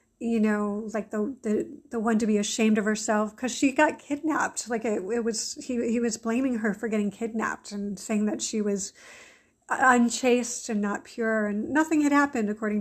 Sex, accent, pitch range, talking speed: female, American, 215-250 Hz, 195 wpm